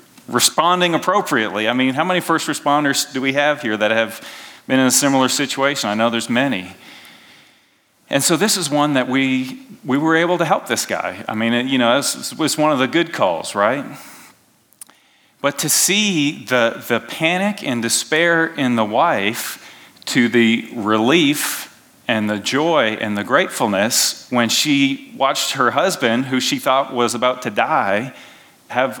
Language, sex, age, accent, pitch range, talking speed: English, male, 40-59, American, 125-165 Hz, 175 wpm